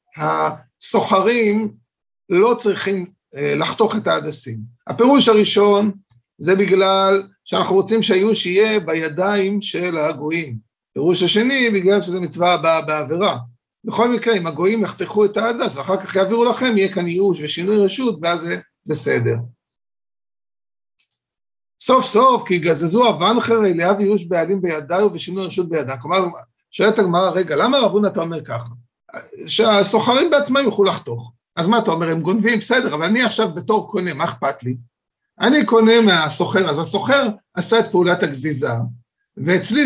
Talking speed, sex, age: 140 wpm, male, 50-69